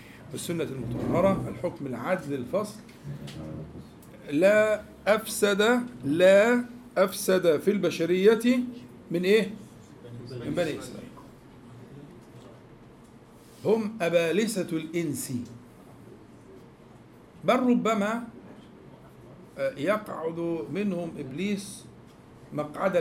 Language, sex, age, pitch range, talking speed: Arabic, male, 50-69, 145-215 Hz, 65 wpm